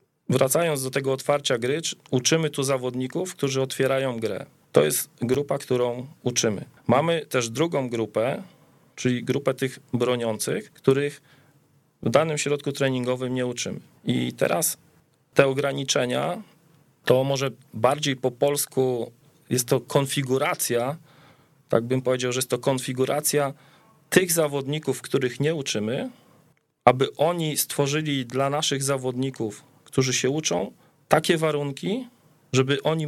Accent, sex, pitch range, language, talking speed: native, male, 130-150 Hz, Polish, 125 wpm